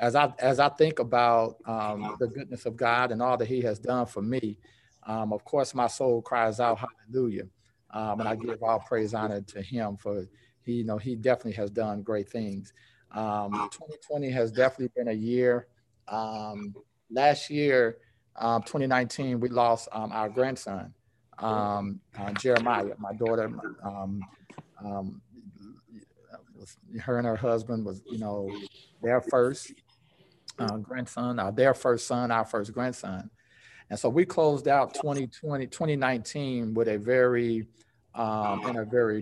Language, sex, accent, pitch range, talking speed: English, male, American, 110-125 Hz, 155 wpm